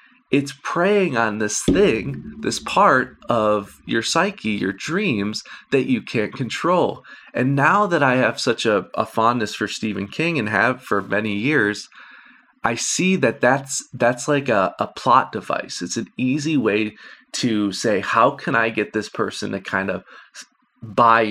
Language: English